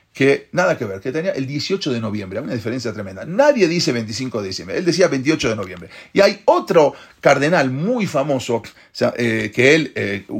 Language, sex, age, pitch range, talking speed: English, male, 40-59, 115-170 Hz, 200 wpm